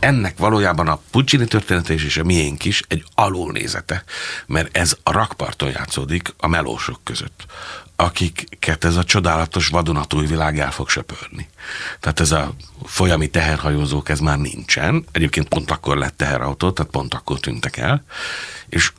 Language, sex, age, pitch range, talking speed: Hungarian, male, 60-79, 75-95 Hz, 150 wpm